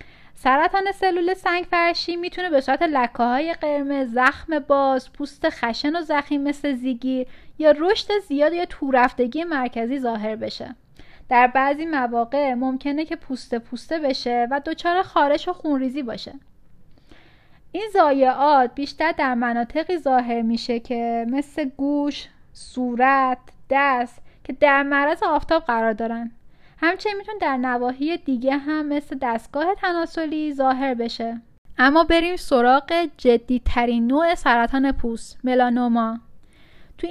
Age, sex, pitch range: 10-29, female, 245-320 Hz